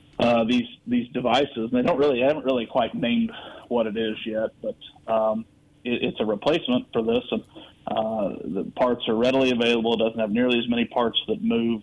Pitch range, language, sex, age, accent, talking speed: 110-135 Hz, English, male, 30-49, American, 210 wpm